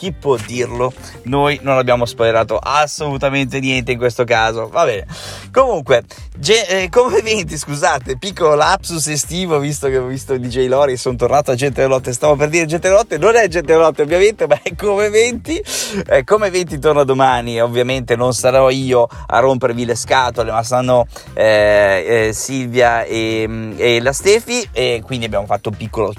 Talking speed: 175 wpm